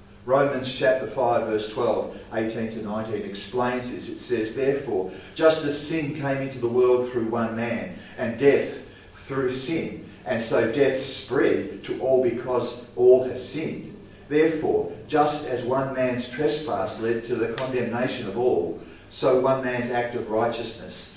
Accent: Australian